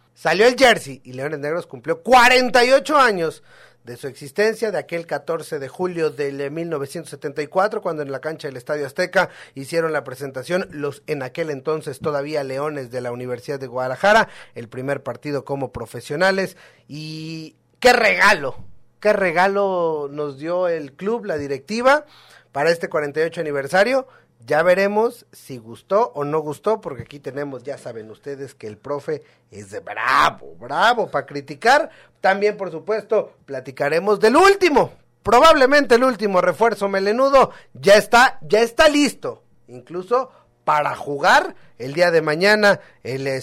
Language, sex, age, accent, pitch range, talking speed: Spanish, male, 40-59, Mexican, 140-200 Hz, 150 wpm